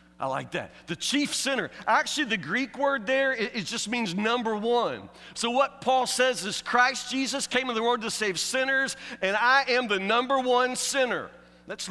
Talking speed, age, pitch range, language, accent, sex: 190 wpm, 40-59, 170-225 Hz, English, American, male